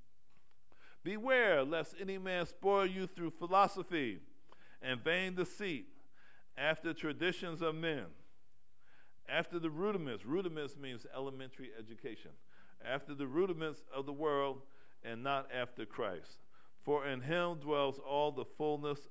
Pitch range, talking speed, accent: 125-155 Hz, 120 wpm, American